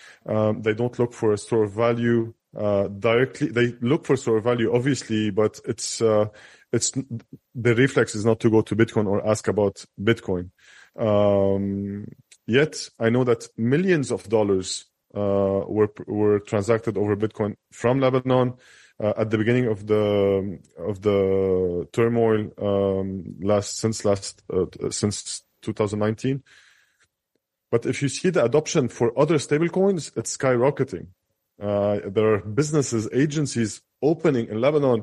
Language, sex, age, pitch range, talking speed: English, male, 20-39, 105-135 Hz, 145 wpm